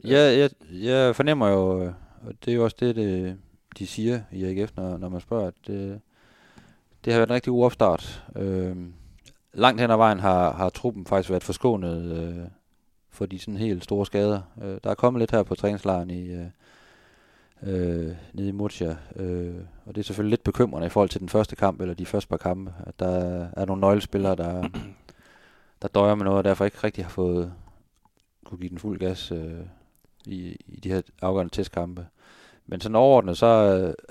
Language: Danish